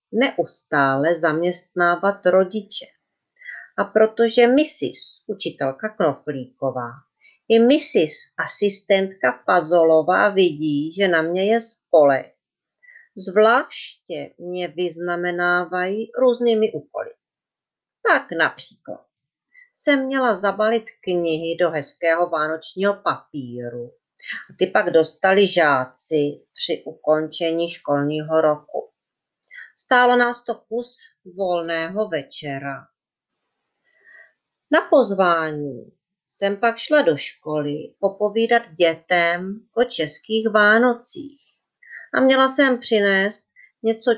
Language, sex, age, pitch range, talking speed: Czech, female, 40-59, 165-235 Hz, 90 wpm